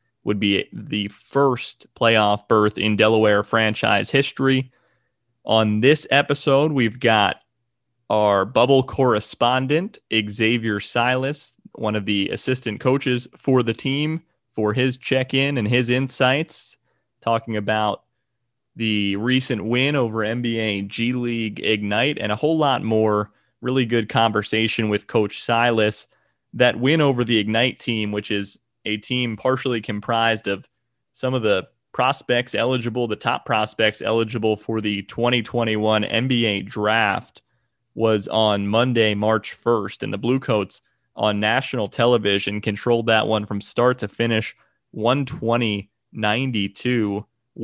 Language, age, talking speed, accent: English, 30-49, 125 wpm, American